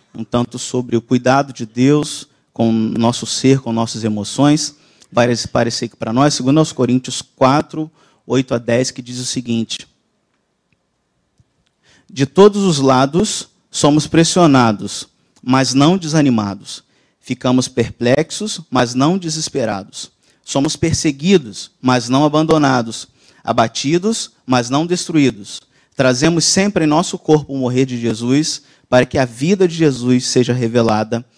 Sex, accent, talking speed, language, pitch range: male, Brazilian, 135 wpm, Spanish, 120-145 Hz